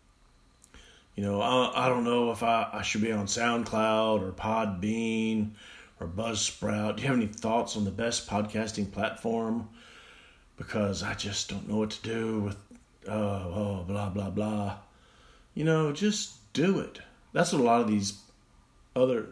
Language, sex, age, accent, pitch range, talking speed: English, male, 40-59, American, 100-120 Hz, 165 wpm